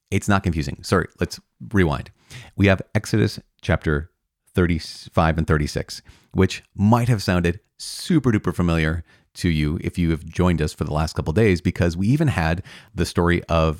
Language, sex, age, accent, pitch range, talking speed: English, male, 40-59, American, 85-110 Hz, 175 wpm